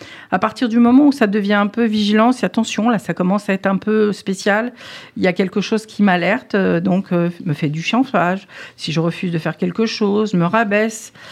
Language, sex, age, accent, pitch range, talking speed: French, female, 50-69, French, 175-215 Hz, 220 wpm